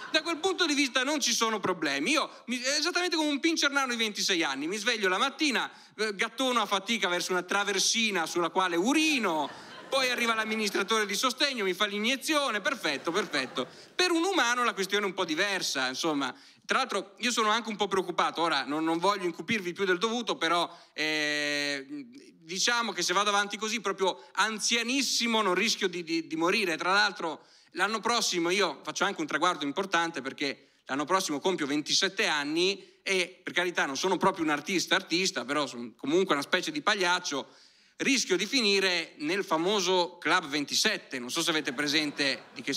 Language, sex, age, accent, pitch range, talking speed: Italian, male, 30-49, native, 165-235 Hz, 180 wpm